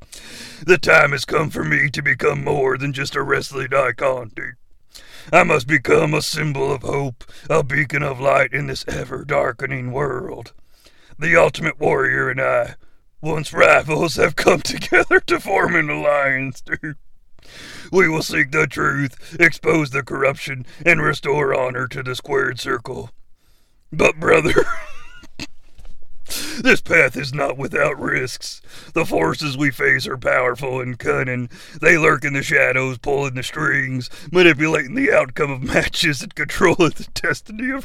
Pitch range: 130-155 Hz